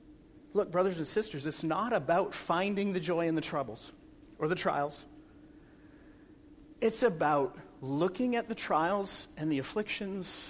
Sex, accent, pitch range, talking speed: male, American, 180-270 Hz, 145 wpm